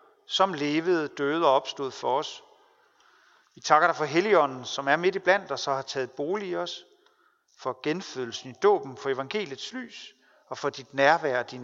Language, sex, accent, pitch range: Danish, male, native, 135-215 Hz